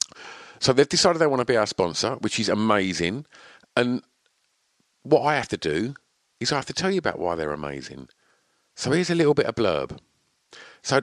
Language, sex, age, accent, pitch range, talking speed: English, male, 50-69, British, 85-125 Hz, 195 wpm